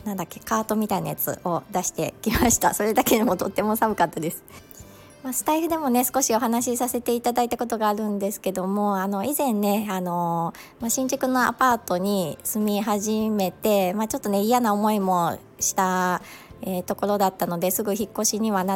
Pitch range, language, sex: 180-225 Hz, Japanese, male